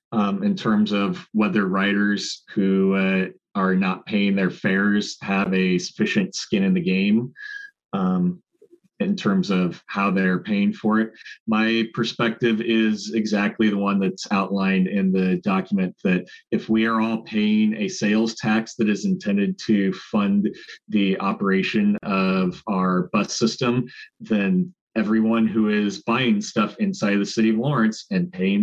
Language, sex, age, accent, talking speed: English, male, 30-49, American, 155 wpm